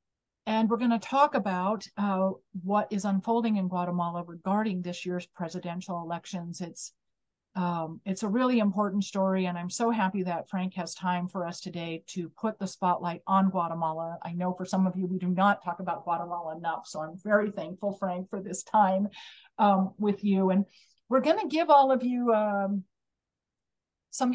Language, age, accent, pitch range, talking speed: English, 50-69, American, 180-225 Hz, 180 wpm